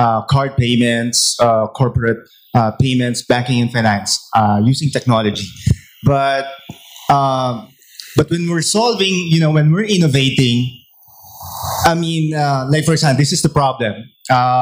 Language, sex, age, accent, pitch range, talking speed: English, male, 20-39, Filipino, 125-160 Hz, 145 wpm